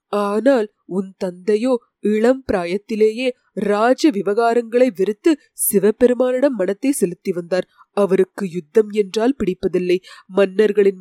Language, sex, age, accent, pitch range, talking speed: Tamil, female, 20-39, native, 190-235 Hz, 55 wpm